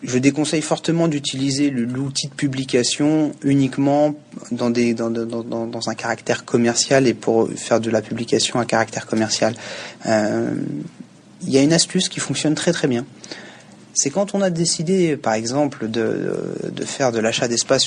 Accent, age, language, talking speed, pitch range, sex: French, 30-49, French, 155 wpm, 115-155 Hz, male